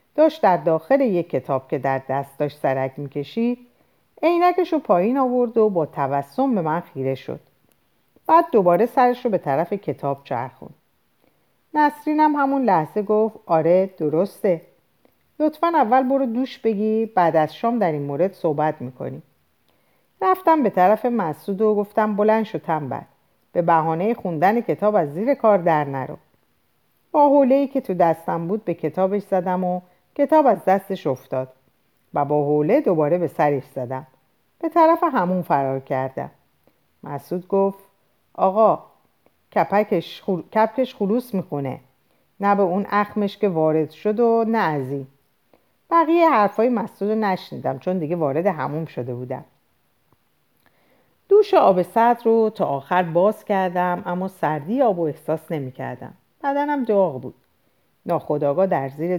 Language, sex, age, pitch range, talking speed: Persian, female, 50-69, 155-230 Hz, 145 wpm